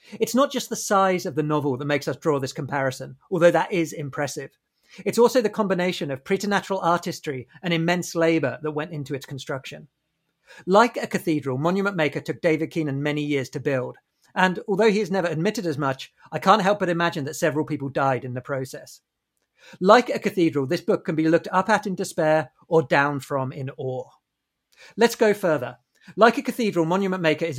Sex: male